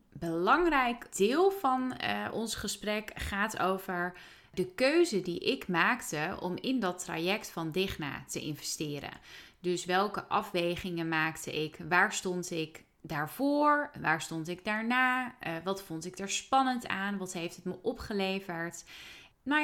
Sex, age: female, 30-49